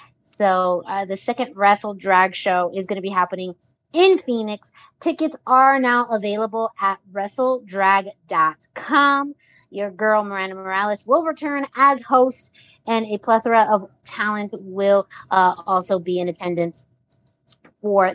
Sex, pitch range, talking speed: female, 185-230 Hz, 130 wpm